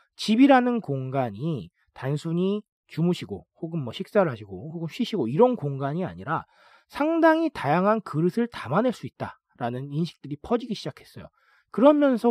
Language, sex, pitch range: Korean, male, 135-225 Hz